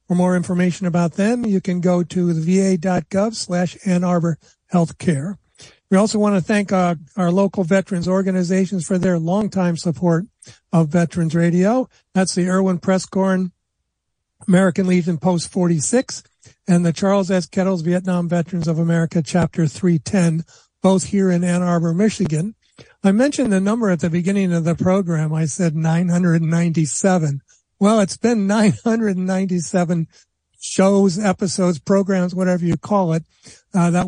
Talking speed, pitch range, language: 145 wpm, 170-200 Hz, English